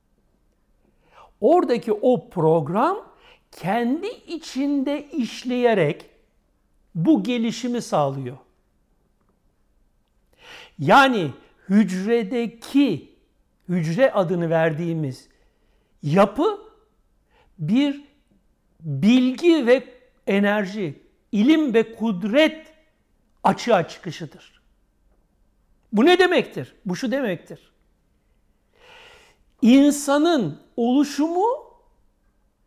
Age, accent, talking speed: 60-79, native, 60 wpm